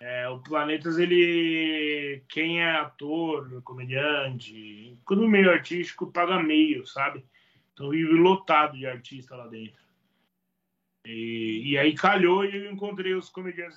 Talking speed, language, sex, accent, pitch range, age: 135 wpm, Portuguese, male, Brazilian, 135-185 Hz, 20-39